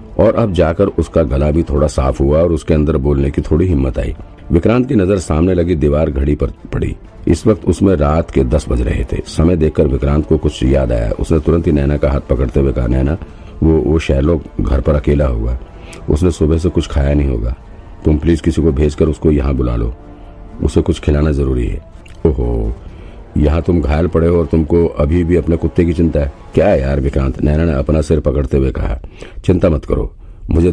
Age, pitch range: 50-69, 70-85 Hz